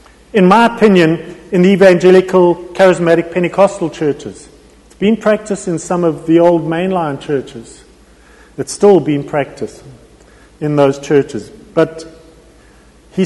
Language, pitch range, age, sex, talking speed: English, 145-185 Hz, 40-59, male, 125 wpm